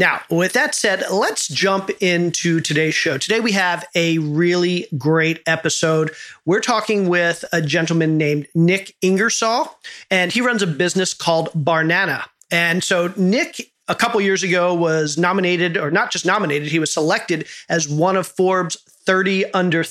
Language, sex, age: English, male, 40-59